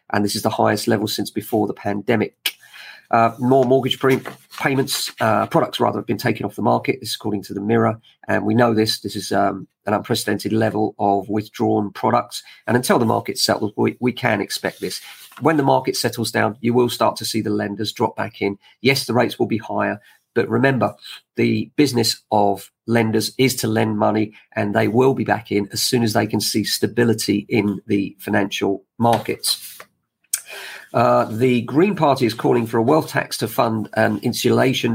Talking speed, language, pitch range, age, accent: 195 wpm, English, 105-125 Hz, 40-59, British